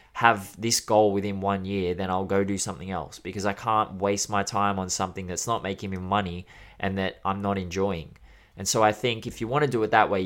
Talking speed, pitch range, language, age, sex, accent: 245 wpm, 95-110 Hz, English, 20-39, male, Australian